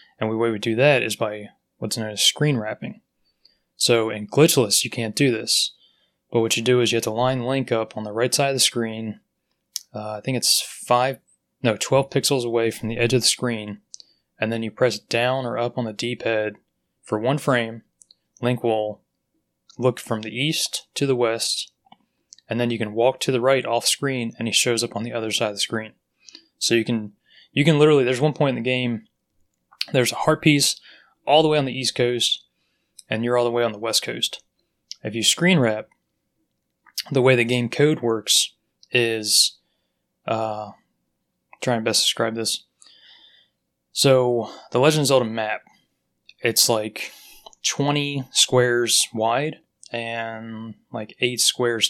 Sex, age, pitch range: male, 20-39, 110-130 Hz